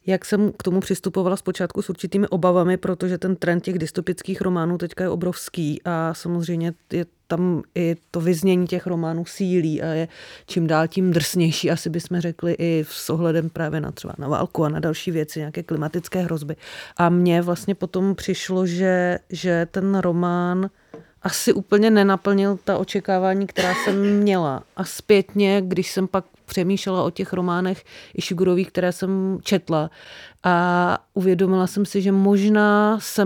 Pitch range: 175-195 Hz